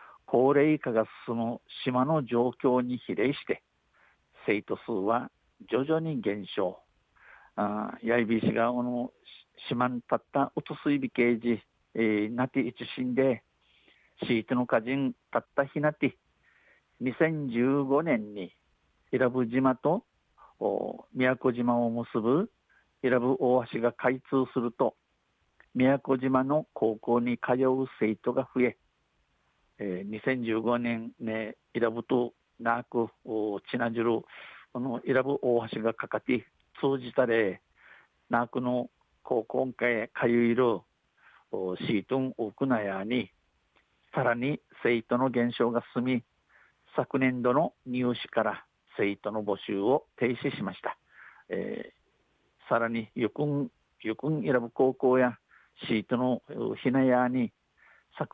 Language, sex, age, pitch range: Japanese, male, 50-69, 115-130 Hz